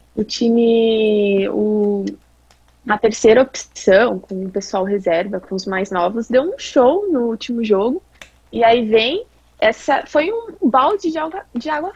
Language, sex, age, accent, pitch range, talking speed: Portuguese, female, 20-39, Brazilian, 200-265 Hz, 155 wpm